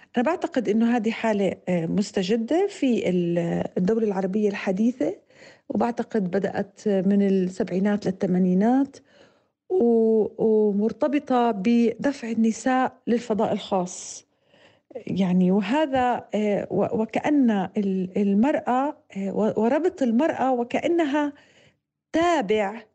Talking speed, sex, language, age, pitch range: 75 wpm, female, Arabic, 50-69, 210-270 Hz